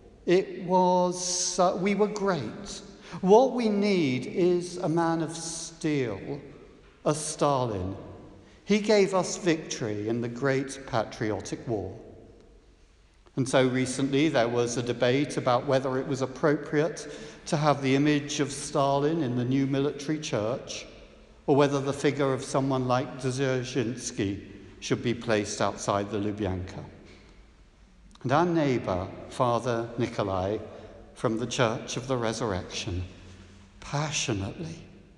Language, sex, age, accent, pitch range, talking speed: English, male, 60-79, British, 115-160 Hz, 125 wpm